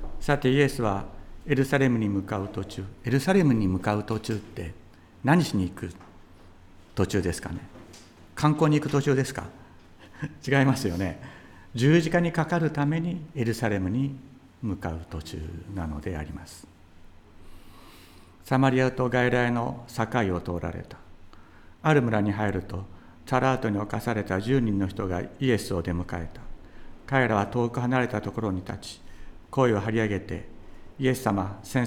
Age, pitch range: 60-79, 90-125 Hz